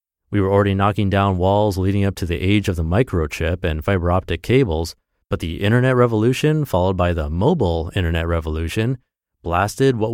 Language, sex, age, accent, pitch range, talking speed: English, male, 30-49, American, 90-120 Hz, 180 wpm